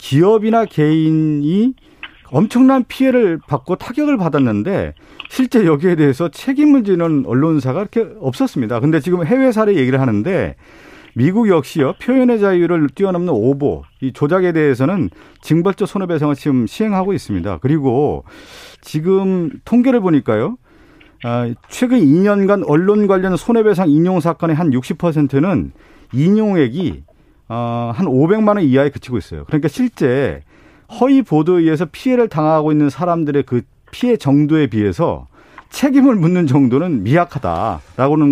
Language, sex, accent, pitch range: Korean, male, native, 135-200 Hz